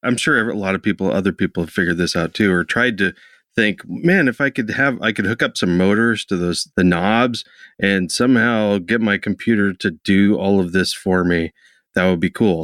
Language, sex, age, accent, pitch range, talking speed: English, male, 30-49, American, 90-105 Hz, 230 wpm